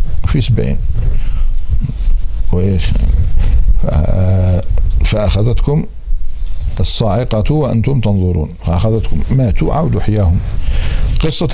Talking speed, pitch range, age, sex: 55 wpm, 90-125 Hz, 50-69, male